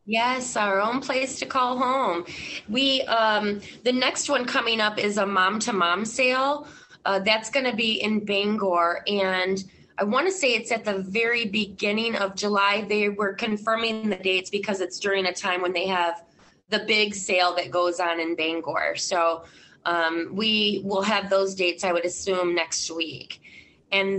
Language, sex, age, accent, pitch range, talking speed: English, female, 20-39, American, 190-235 Hz, 175 wpm